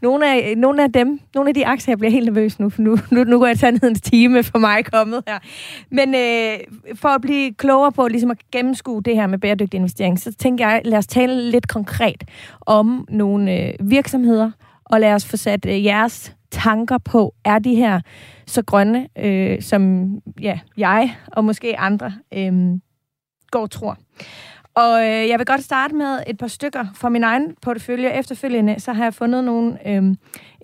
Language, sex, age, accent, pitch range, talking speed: Danish, female, 30-49, native, 210-250 Hz, 195 wpm